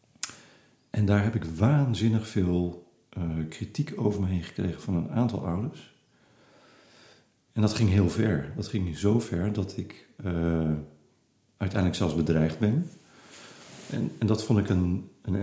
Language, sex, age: Dutch, male, 40-59